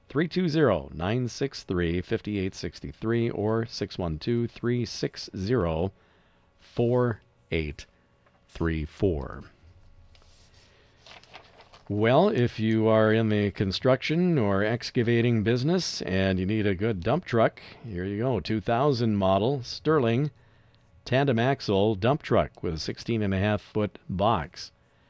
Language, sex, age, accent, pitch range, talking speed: English, male, 50-69, American, 95-120 Hz, 80 wpm